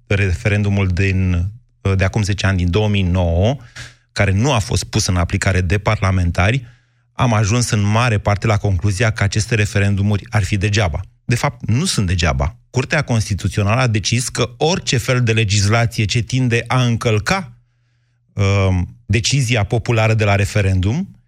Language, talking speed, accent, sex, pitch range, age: Romanian, 150 wpm, native, male, 105-125 Hz, 30-49